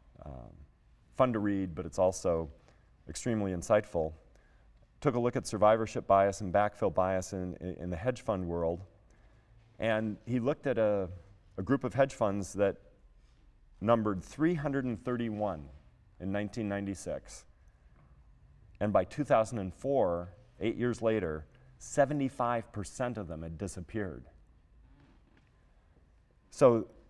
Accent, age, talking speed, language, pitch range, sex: American, 40-59, 110 wpm, English, 90-120 Hz, male